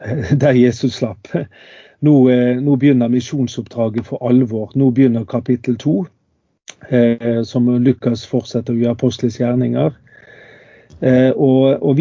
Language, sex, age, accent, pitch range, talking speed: English, male, 40-59, Swedish, 120-135 Hz, 95 wpm